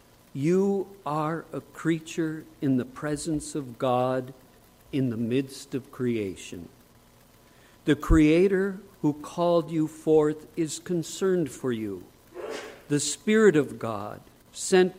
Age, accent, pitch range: 50-69, American, 125-170 Hz